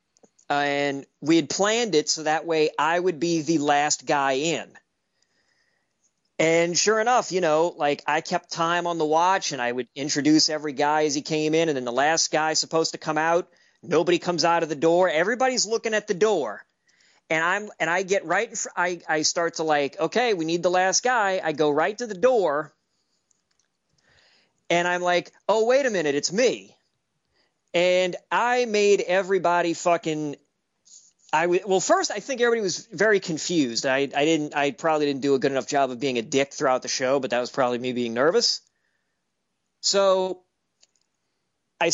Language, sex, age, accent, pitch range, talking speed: English, male, 40-59, American, 150-190 Hz, 185 wpm